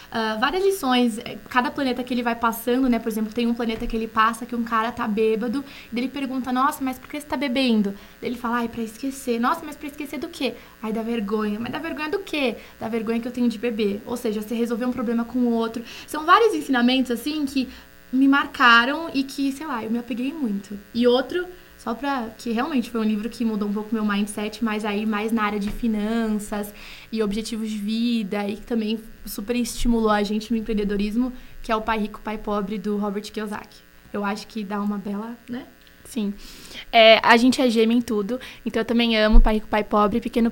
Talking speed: 225 wpm